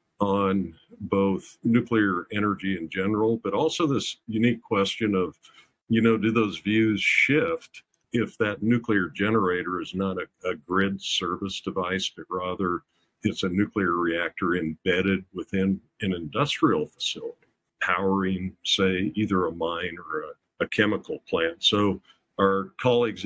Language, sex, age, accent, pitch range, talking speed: English, male, 50-69, American, 90-110 Hz, 135 wpm